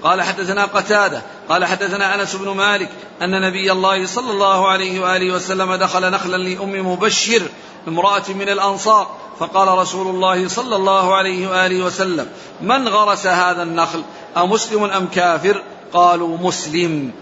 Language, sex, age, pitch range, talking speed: Arabic, male, 50-69, 185-200 Hz, 140 wpm